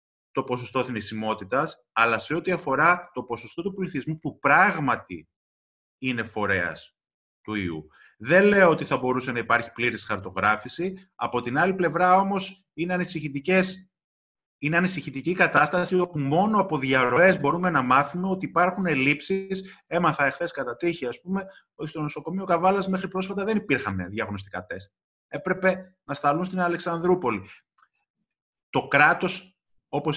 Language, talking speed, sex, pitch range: Greek, 135 wpm, male, 125-180 Hz